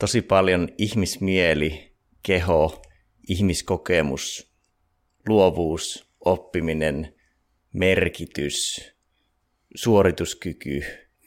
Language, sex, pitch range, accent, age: Finnish, male, 80-95 Hz, native, 30-49